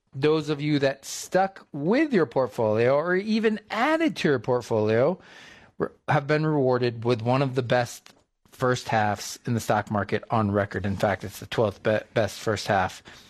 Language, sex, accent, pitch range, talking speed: English, male, American, 110-135 Hz, 170 wpm